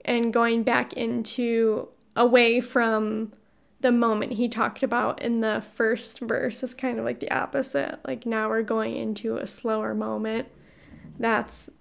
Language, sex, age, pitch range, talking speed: English, female, 10-29, 230-265 Hz, 150 wpm